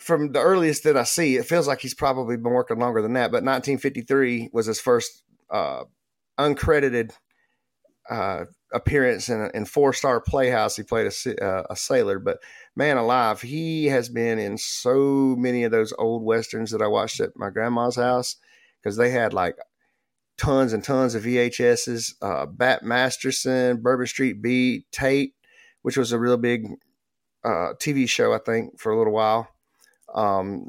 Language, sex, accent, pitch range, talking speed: English, male, American, 115-135 Hz, 170 wpm